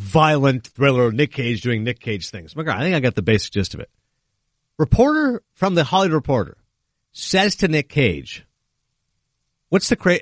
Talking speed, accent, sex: 190 wpm, American, male